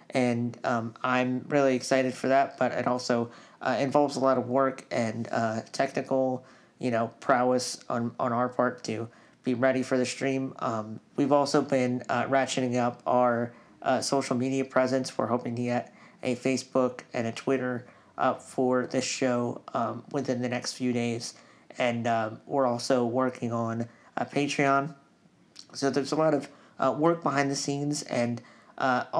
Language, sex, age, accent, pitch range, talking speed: English, male, 40-59, American, 120-140 Hz, 170 wpm